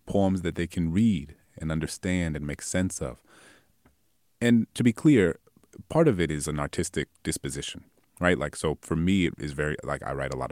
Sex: male